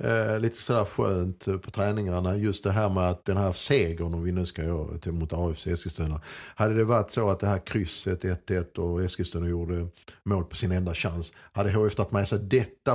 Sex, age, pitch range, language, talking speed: male, 50-69, 85-105 Hz, Swedish, 210 wpm